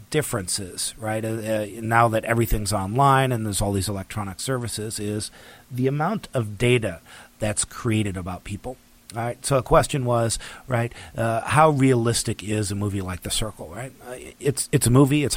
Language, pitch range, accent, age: English, 105-125 Hz, American, 40-59